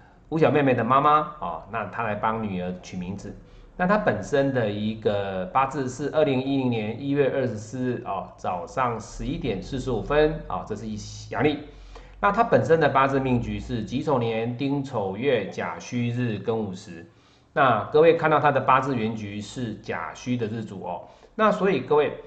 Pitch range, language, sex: 110-145 Hz, Chinese, male